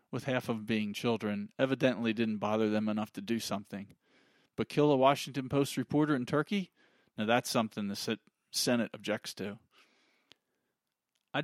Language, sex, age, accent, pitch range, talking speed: English, male, 40-59, American, 110-130 Hz, 155 wpm